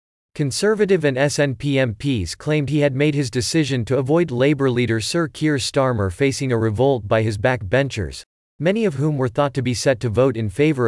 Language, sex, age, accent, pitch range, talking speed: English, male, 40-59, American, 115-150 Hz, 195 wpm